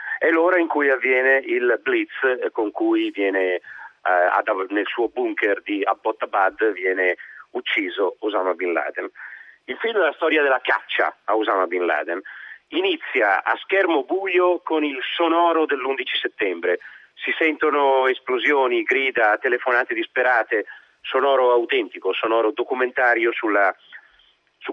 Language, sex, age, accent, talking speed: Italian, male, 40-59, native, 135 wpm